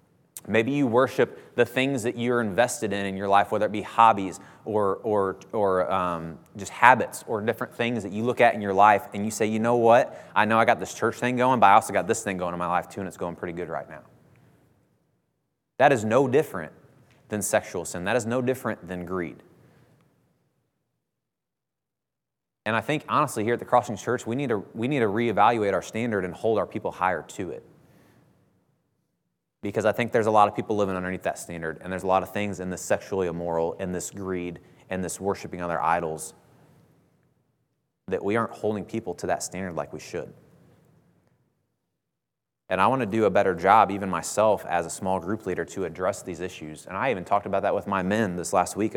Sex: male